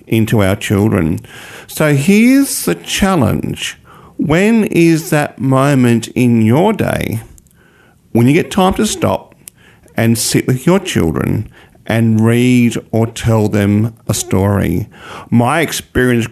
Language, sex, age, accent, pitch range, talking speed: English, male, 50-69, Australian, 110-140 Hz, 125 wpm